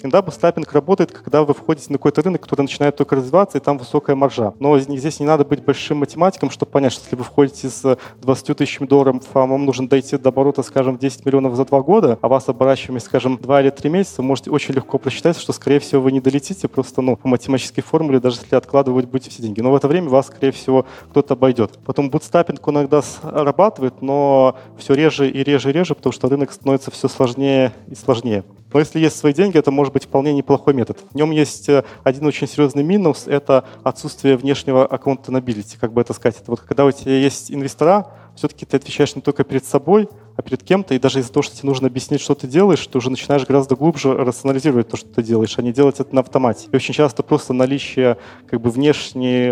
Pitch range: 130-145 Hz